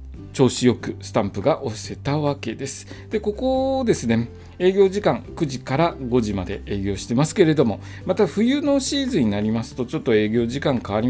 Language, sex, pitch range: Japanese, male, 100-145 Hz